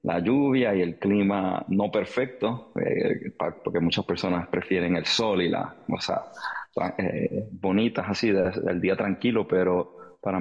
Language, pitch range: English, 90-110 Hz